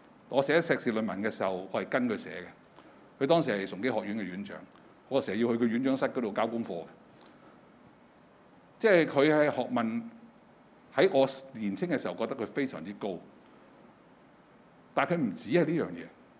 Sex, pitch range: male, 130-220 Hz